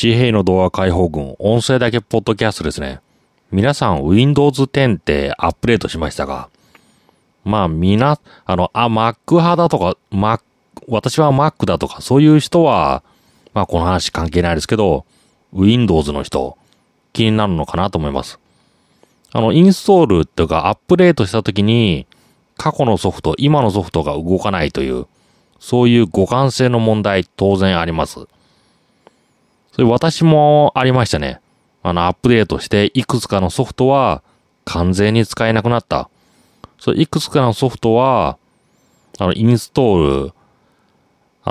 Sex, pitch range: male, 90-135 Hz